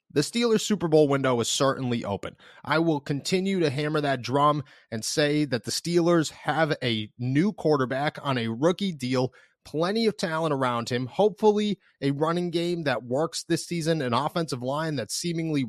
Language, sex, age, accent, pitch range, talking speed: English, male, 30-49, American, 130-165 Hz, 175 wpm